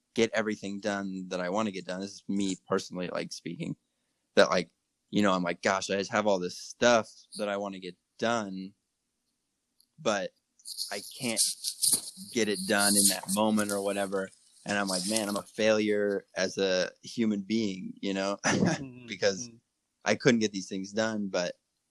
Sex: male